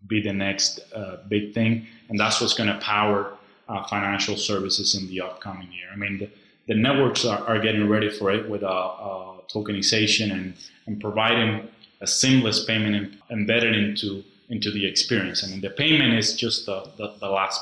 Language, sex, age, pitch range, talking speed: English, male, 20-39, 100-115 Hz, 190 wpm